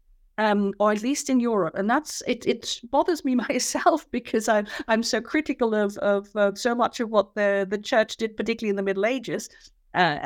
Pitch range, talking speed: 210-275 Hz, 205 wpm